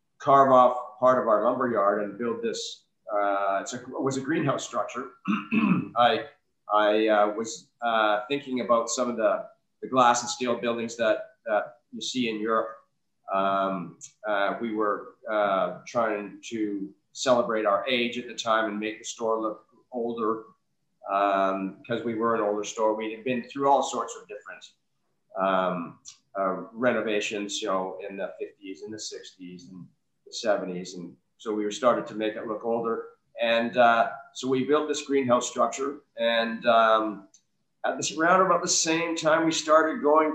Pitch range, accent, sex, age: 105-135 Hz, American, male, 40-59